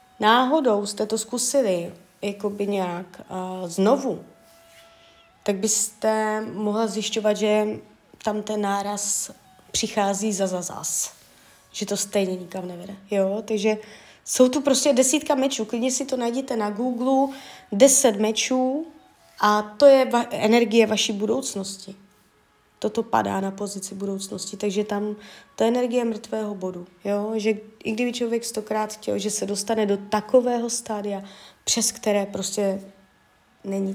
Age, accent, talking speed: 20-39, native, 135 wpm